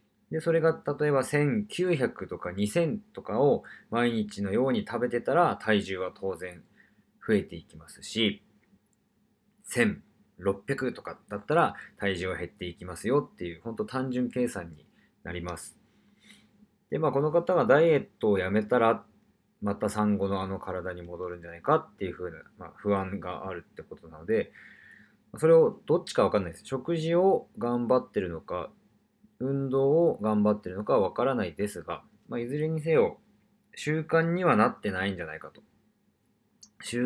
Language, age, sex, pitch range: Japanese, 20-39, male, 100-160 Hz